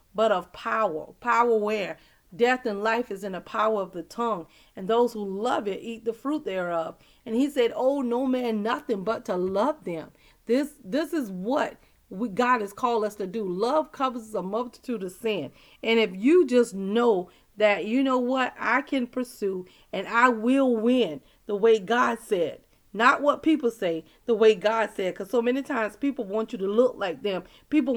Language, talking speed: English, 195 wpm